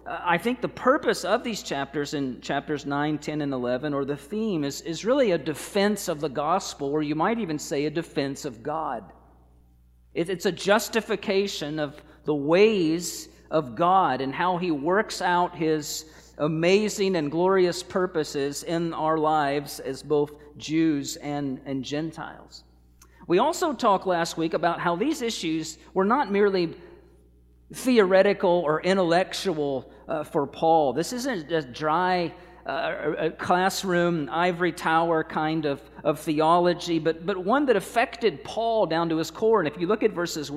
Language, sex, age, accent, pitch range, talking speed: English, male, 40-59, American, 150-185 Hz, 155 wpm